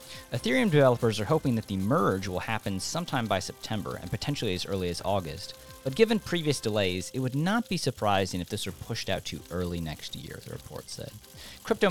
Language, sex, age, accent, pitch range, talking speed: English, male, 40-59, American, 90-130 Hz, 200 wpm